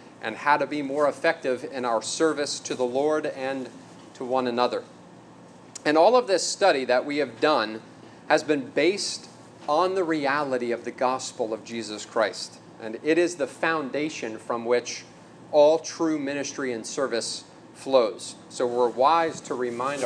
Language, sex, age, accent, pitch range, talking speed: English, male, 40-59, American, 125-160 Hz, 165 wpm